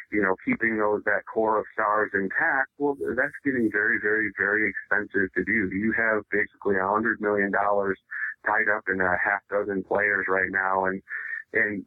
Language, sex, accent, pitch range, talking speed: English, male, American, 105-135 Hz, 180 wpm